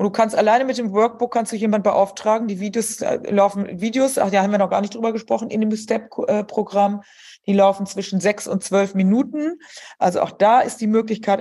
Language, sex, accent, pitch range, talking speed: German, female, German, 185-220 Hz, 210 wpm